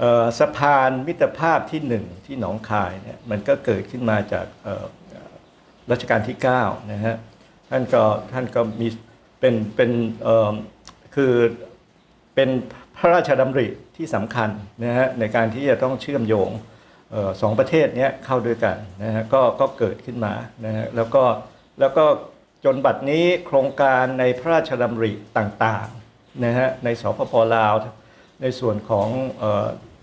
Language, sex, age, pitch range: Thai, male, 60-79, 110-130 Hz